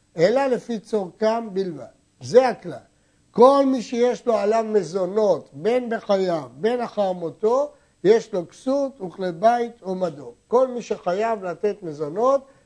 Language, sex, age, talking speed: Hebrew, male, 60-79, 135 wpm